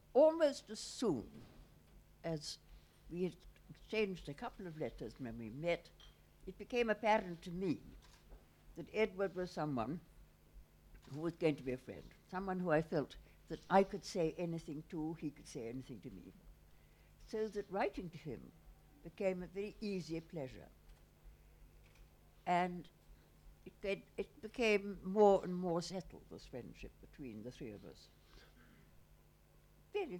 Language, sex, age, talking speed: English, female, 60-79, 145 wpm